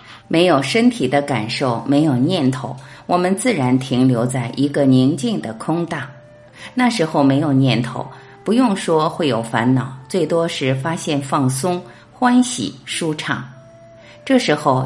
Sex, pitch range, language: female, 125-190 Hz, Chinese